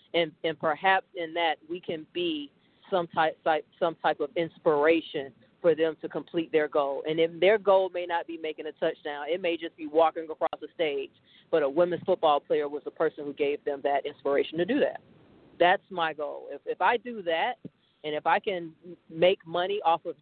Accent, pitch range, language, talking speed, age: American, 160-190 Hz, English, 210 wpm, 40-59